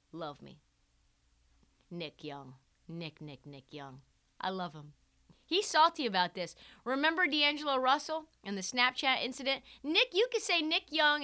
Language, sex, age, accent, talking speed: English, female, 30-49, American, 150 wpm